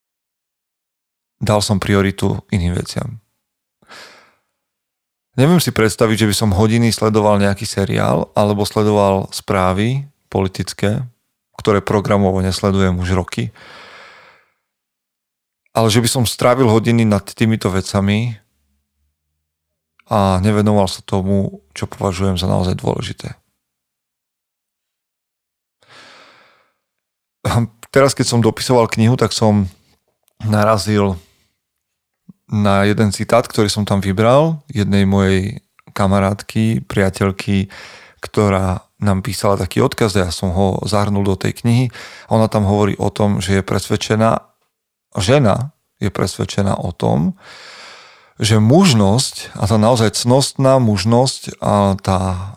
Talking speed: 110 wpm